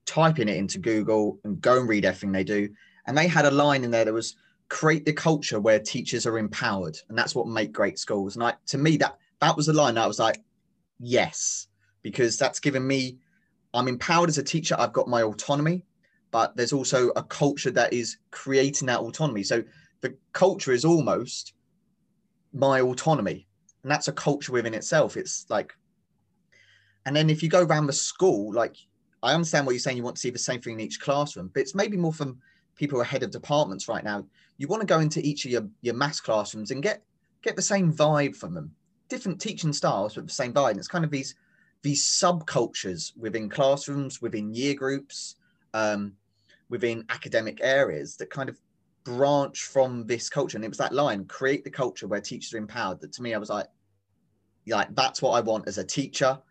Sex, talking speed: male, 210 wpm